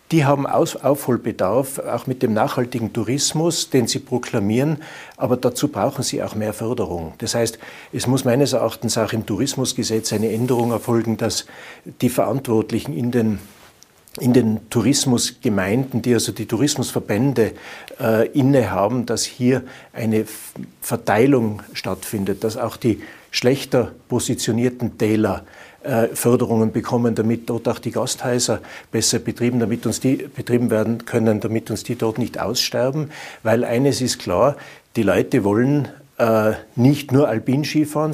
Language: German